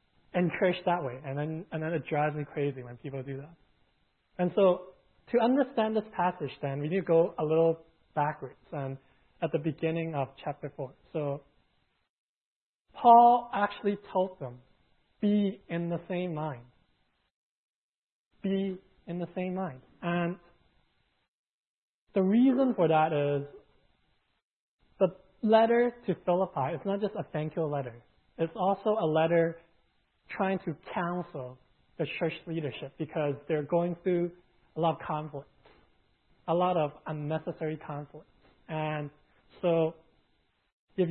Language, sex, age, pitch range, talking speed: English, male, 20-39, 150-180 Hz, 135 wpm